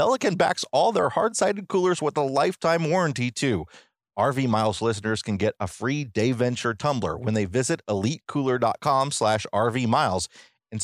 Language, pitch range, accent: English, 100-135 Hz, American